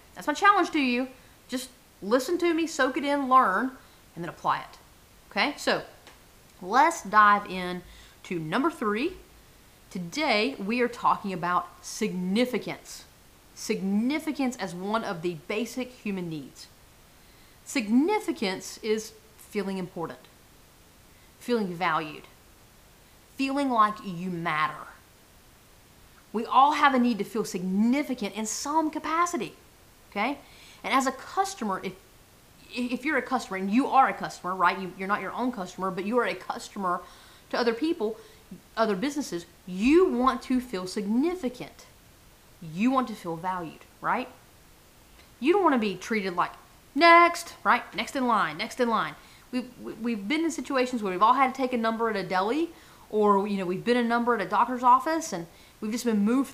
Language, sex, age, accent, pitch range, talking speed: English, female, 40-59, American, 195-265 Hz, 160 wpm